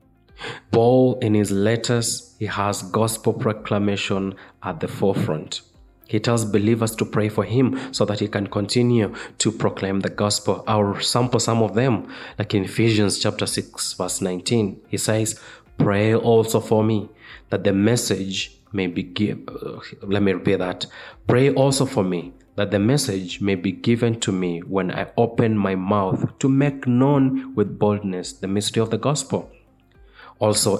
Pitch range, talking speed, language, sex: 100-120 Hz, 160 wpm, English, male